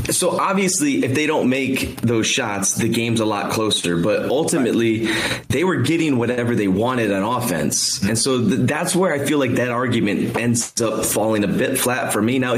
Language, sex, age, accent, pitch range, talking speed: English, male, 20-39, American, 110-135 Hz, 195 wpm